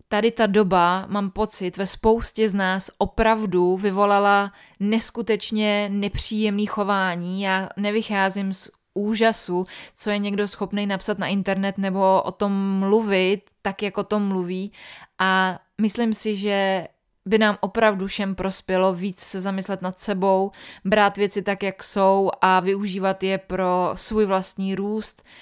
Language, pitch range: Czech, 190-210 Hz